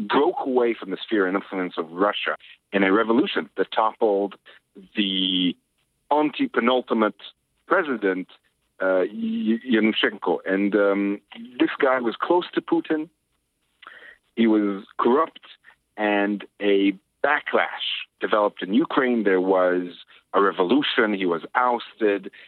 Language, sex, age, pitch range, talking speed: English, male, 50-69, 95-130 Hz, 115 wpm